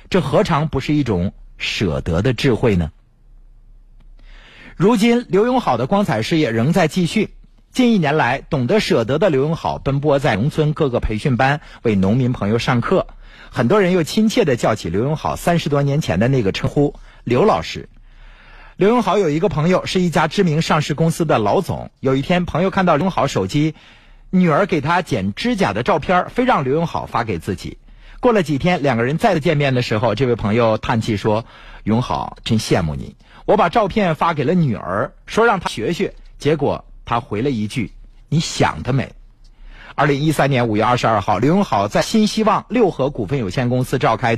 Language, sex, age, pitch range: Chinese, male, 50-69, 120-180 Hz